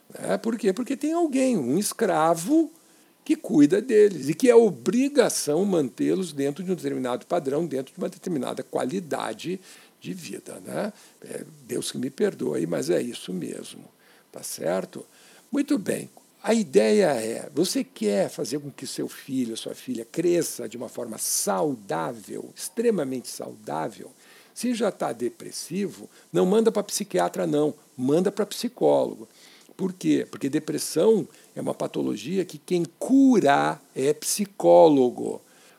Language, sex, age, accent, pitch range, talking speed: Portuguese, male, 60-79, Brazilian, 150-225 Hz, 145 wpm